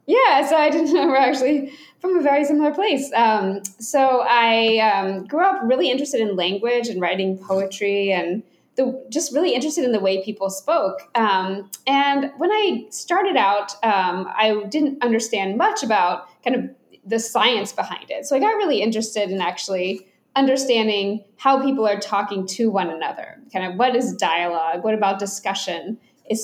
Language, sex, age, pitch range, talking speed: English, female, 20-39, 200-280 Hz, 175 wpm